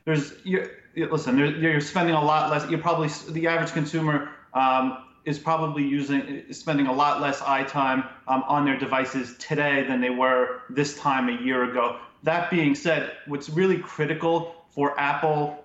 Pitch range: 130-155 Hz